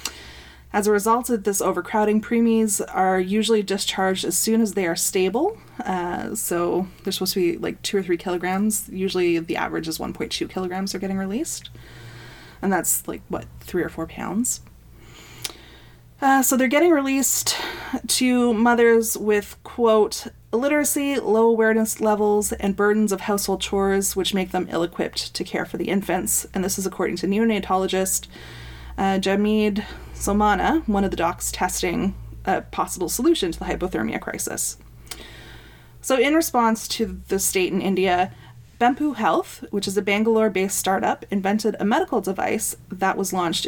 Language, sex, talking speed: English, female, 155 wpm